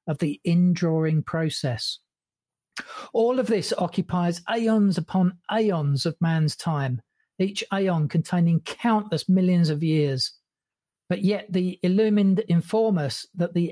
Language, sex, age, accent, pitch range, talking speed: English, male, 40-59, British, 160-205 Hz, 125 wpm